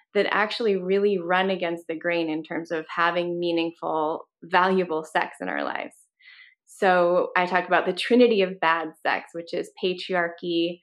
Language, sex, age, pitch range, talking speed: English, female, 20-39, 170-205 Hz, 160 wpm